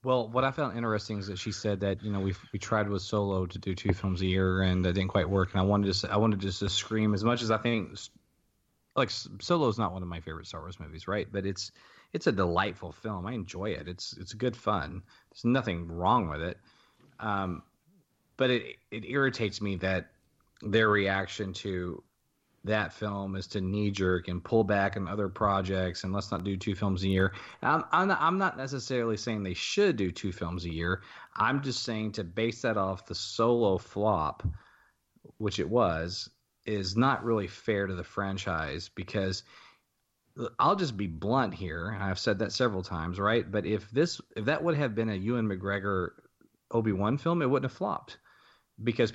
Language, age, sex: English, 30-49, male